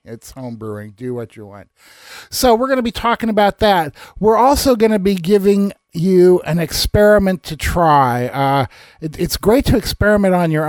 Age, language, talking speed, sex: 50-69, English, 185 wpm, male